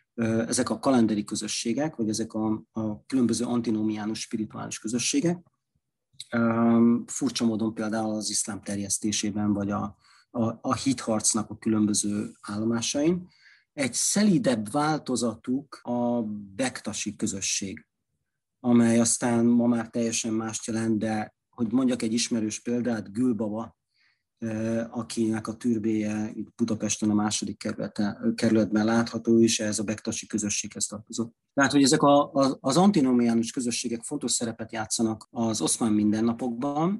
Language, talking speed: Hungarian, 125 wpm